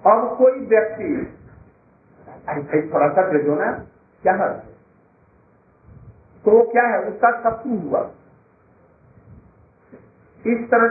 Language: Hindi